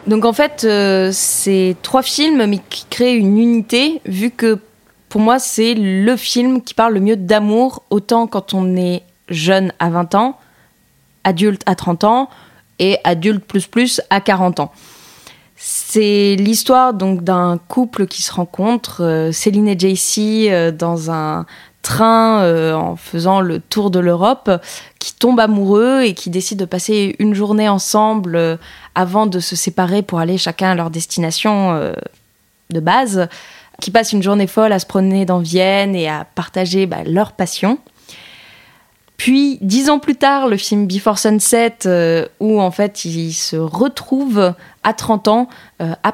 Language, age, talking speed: French, 20-39, 165 wpm